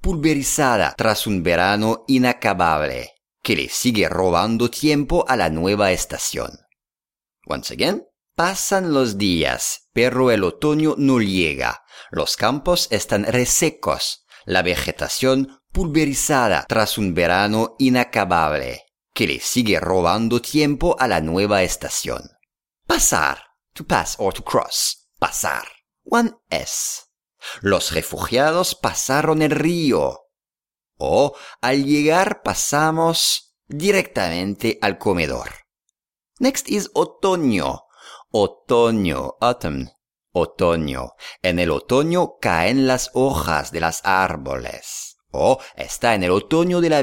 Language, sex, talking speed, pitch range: English, male, 110 wpm, 95-150 Hz